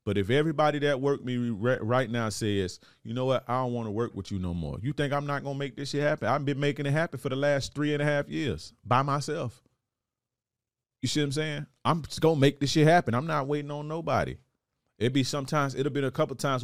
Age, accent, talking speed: 30-49, American, 275 wpm